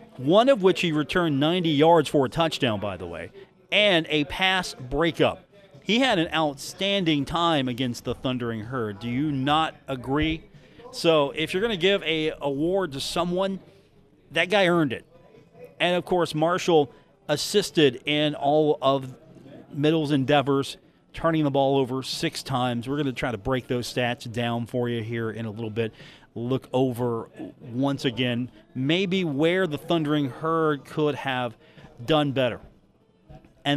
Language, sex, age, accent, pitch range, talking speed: English, male, 40-59, American, 130-165 Hz, 160 wpm